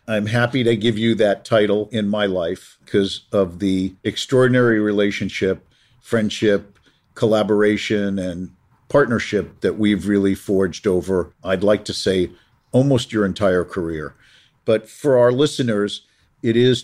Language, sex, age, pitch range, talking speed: English, male, 50-69, 90-110 Hz, 135 wpm